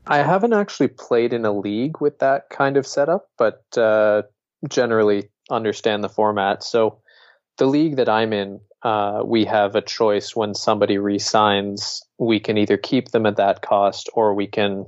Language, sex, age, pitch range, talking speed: English, male, 20-39, 100-120 Hz, 175 wpm